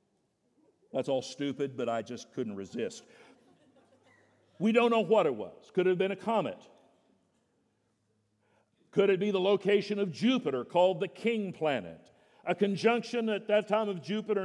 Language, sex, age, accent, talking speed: English, male, 50-69, American, 160 wpm